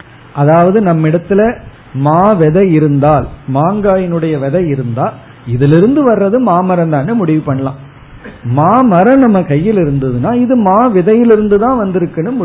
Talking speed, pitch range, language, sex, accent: 120 wpm, 140-205 Hz, Tamil, male, native